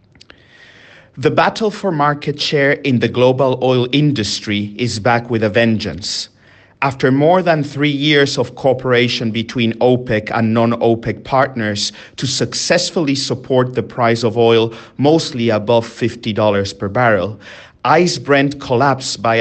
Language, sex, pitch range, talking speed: English, male, 110-140 Hz, 135 wpm